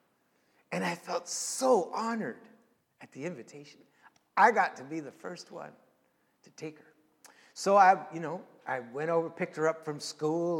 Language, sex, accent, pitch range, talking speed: English, male, American, 170-240 Hz, 170 wpm